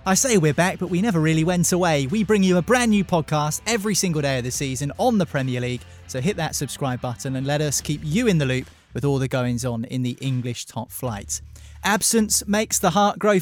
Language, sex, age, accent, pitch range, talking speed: English, male, 20-39, British, 150-200 Hz, 240 wpm